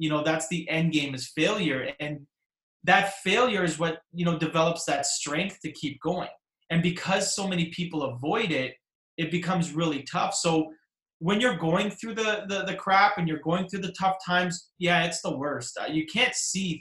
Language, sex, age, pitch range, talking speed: English, male, 30-49, 160-195 Hz, 195 wpm